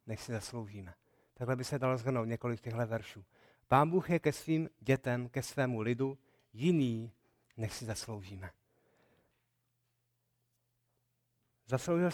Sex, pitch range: male, 120-150 Hz